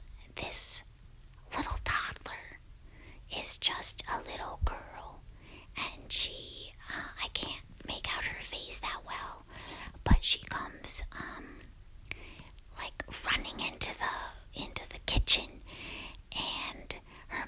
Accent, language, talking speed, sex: American, English, 110 wpm, female